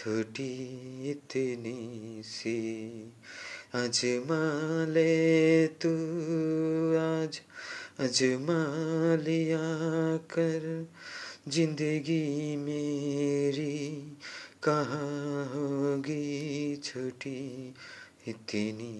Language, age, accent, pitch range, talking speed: Bengali, 30-49, native, 125-160 Hz, 35 wpm